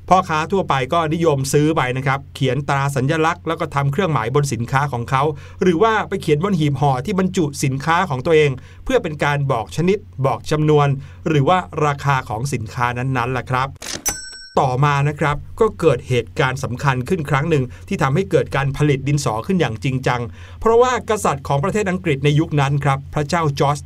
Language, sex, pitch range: Thai, male, 135-170 Hz